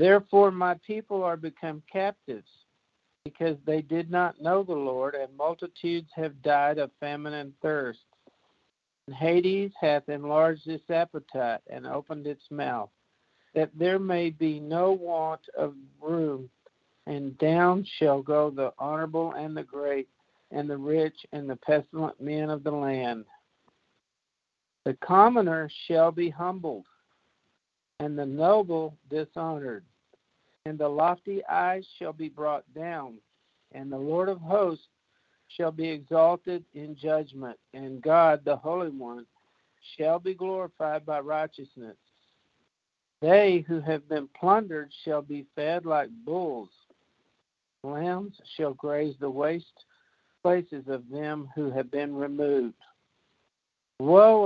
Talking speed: 130 wpm